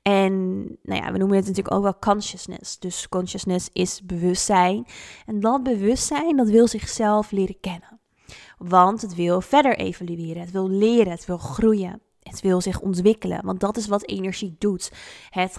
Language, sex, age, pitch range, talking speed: Dutch, female, 20-39, 185-215 Hz, 160 wpm